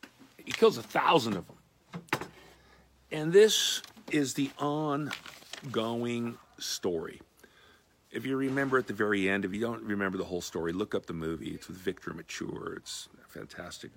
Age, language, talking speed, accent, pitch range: 50-69, English, 160 wpm, American, 85-105 Hz